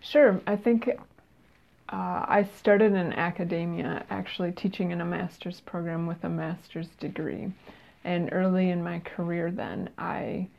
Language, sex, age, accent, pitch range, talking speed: English, female, 20-39, American, 170-190 Hz, 140 wpm